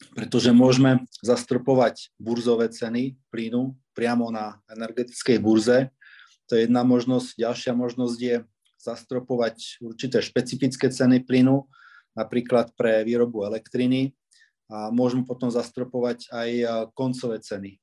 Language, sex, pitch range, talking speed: Slovak, male, 115-125 Hz, 110 wpm